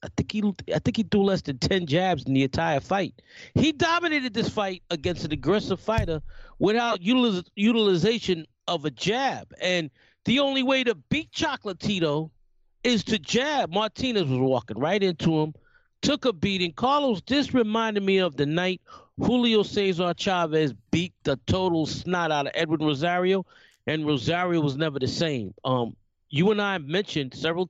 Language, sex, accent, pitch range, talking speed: English, male, American, 145-195 Hz, 170 wpm